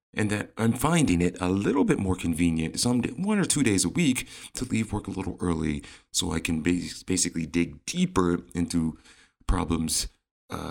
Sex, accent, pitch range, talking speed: male, American, 85-110 Hz, 180 wpm